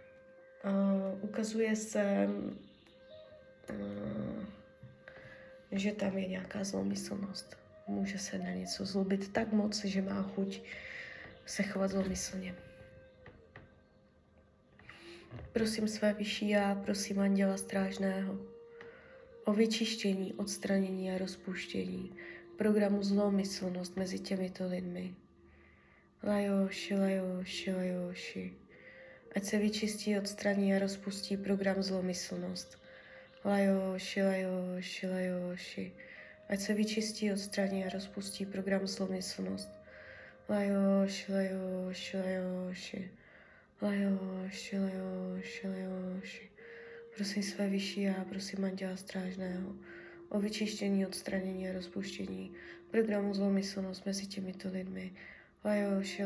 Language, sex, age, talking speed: Czech, female, 20-39, 90 wpm